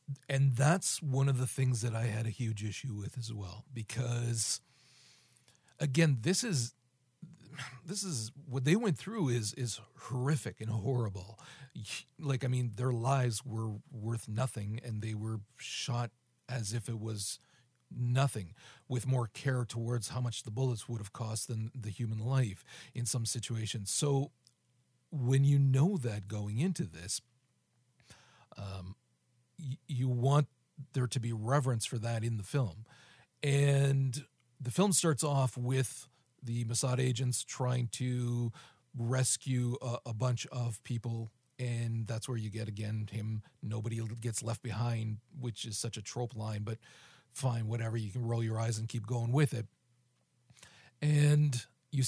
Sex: male